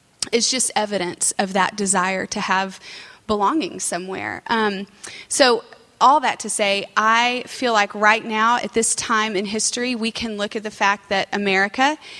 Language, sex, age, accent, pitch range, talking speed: English, female, 30-49, American, 195-225 Hz, 165 wpm